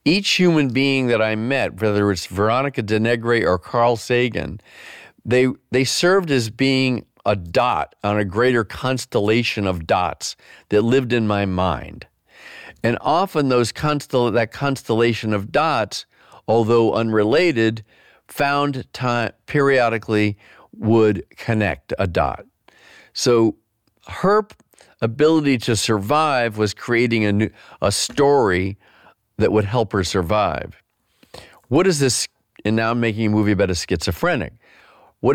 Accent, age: American, 50-69